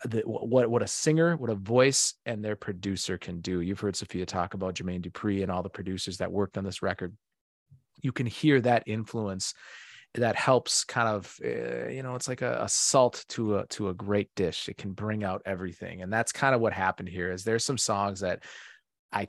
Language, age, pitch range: English, 30-49, 100-130 Hz